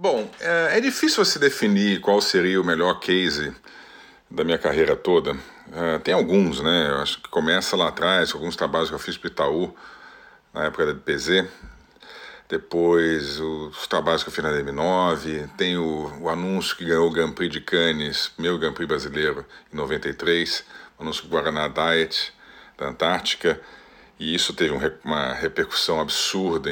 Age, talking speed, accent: 50-69, 160 wpm, Brazilian